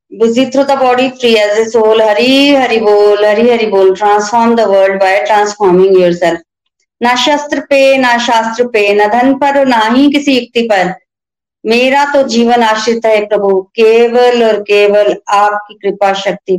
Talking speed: 150 wpm